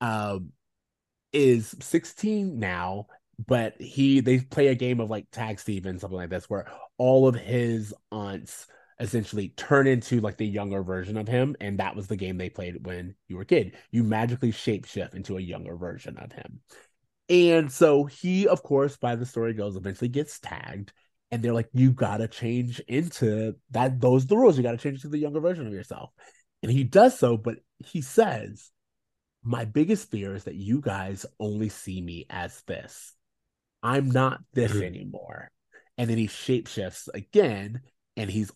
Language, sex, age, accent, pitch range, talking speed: English, male, 20-39, American, 105-155 Hz, 180 wpm